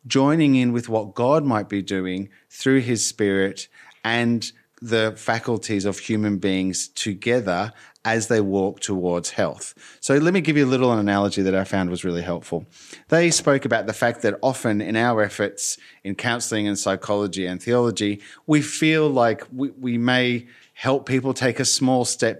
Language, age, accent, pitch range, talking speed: English, 30-49, Australian, 100-135 Hz, 175 wpm